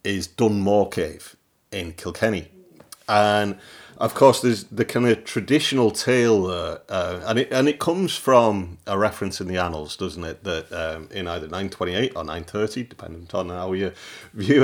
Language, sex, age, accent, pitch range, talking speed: English, male, 40-59, British, 90-110 Hz, 170 wpm